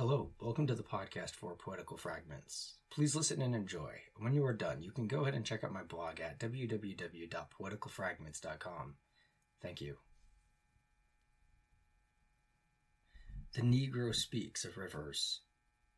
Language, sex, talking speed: English, male, 130 wpm